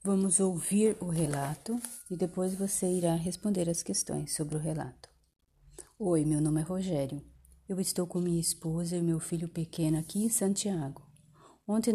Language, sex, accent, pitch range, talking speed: Portuguese, female, Brazilian, 160-195 Hz, 160 wpm